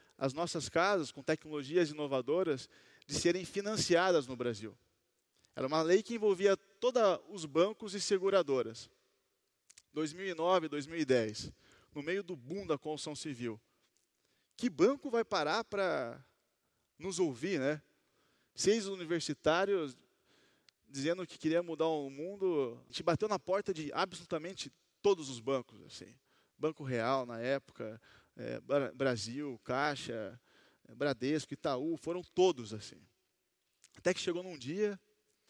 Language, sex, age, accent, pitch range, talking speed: Portuguese, male, 20-39, Brazilian, 130-175 Hz, 125 wpm